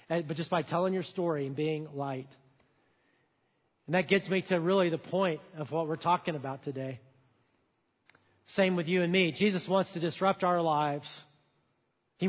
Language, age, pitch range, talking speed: English, 40-59, 155-215 Hz, 170 wpm